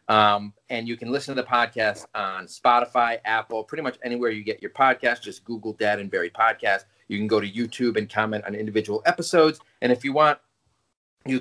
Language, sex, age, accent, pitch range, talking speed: English, male, 30-49, American, 110-140 Hz, 205 wpm